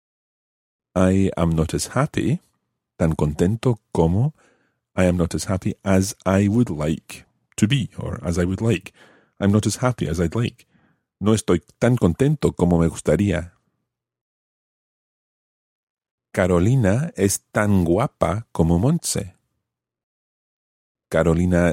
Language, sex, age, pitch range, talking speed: English, male, 40-59, 85-120 Hz, 125 wpm